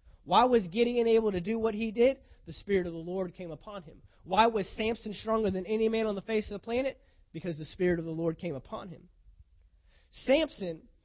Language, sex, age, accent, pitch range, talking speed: English, male, 20-39, American, 160-215 Hz, 215 wpm